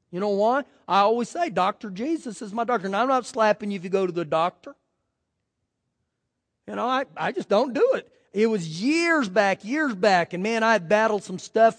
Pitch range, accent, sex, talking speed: 195-265 Hz, American, male, 220 wpm